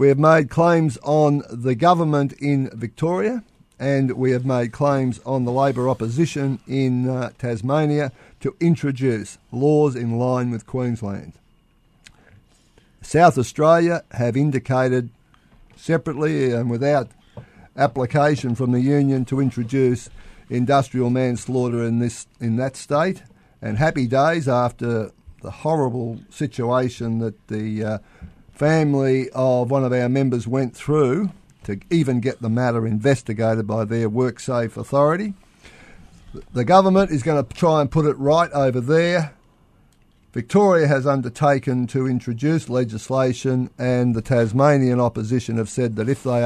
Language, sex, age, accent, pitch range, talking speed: English, male, 50-69, Australian, 115-145 Hz, 135 wpm